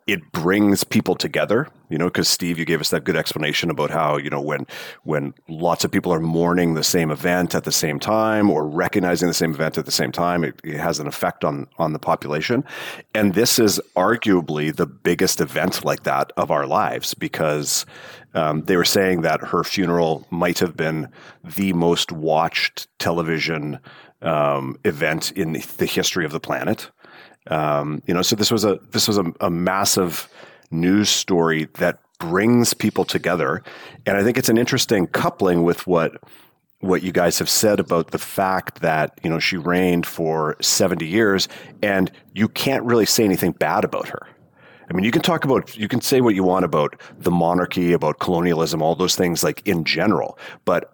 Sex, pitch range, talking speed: male, 80-95 Hz, 190 wpm